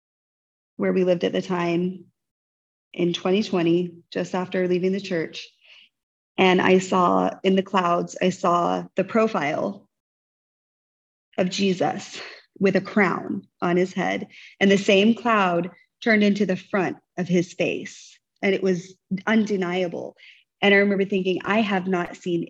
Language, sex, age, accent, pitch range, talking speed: English, female, 30-49, American, 175-200 Hz, 145 wpm